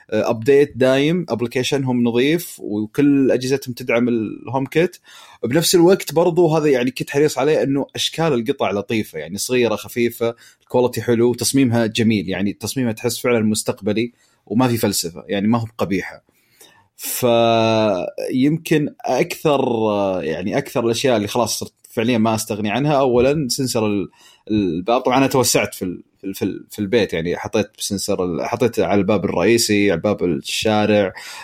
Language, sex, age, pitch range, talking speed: Arabic, male, 30-49, 105-125 Hz, 140 wpm